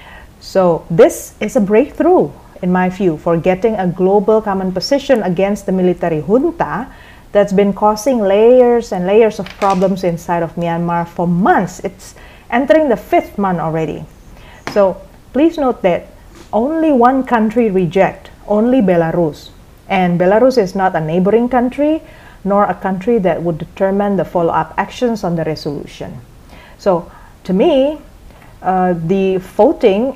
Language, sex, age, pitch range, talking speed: English, female, 40-59, 175-225 Hz, 145 wpm